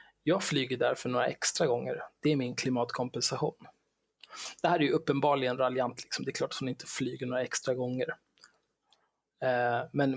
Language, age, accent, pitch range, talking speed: Swedish, 20-39, native, 125-155 Hz, 170 wpm